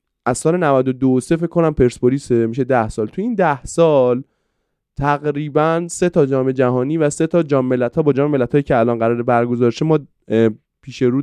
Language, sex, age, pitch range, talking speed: Persian, male, 20-39, 115-145 Hz, 175 wpm